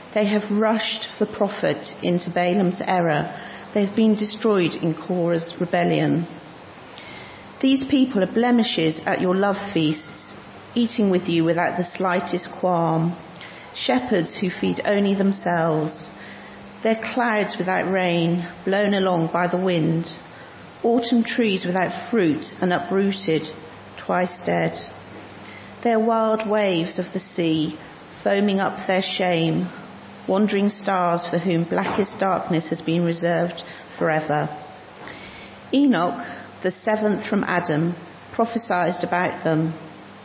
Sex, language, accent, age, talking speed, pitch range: female, English, British, 40-59, 120 wpm, 165-200 Hz